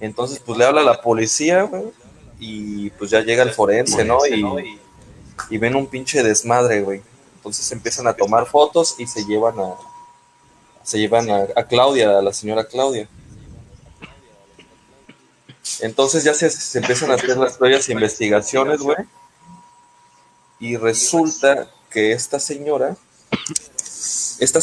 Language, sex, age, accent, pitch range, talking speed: Spanish, male, 20-39, Mexican, 105-135 Hz, 140 wpm